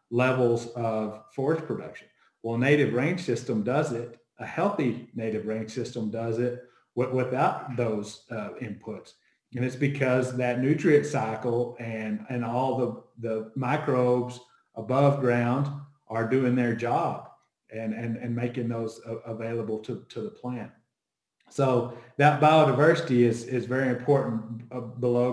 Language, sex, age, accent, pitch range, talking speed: English, male, 40-59, American, 115-130 Hz, 135 wpm